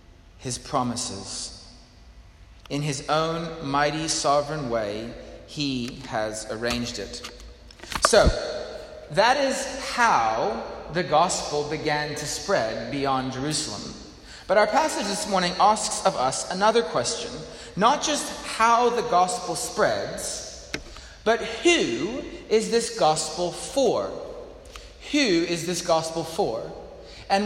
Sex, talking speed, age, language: male, 110 wpm, 30-49, English